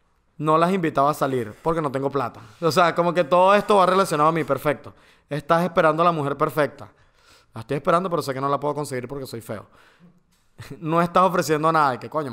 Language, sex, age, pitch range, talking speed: Spanish, male, 30-49, 140-185 Hz, 225 wpm